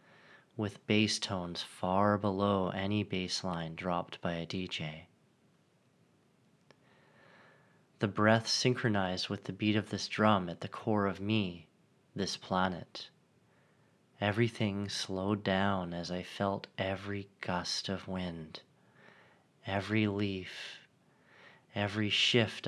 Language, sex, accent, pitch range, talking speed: English, male, American, 95-110 Hz, 110 wpm